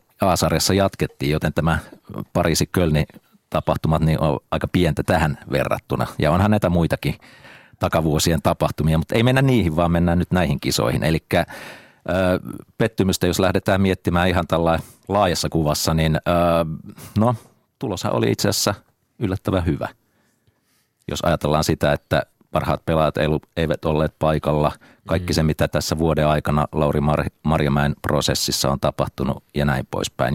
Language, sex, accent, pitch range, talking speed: Finnish, male, native, 75-90 Hz, 135 wpm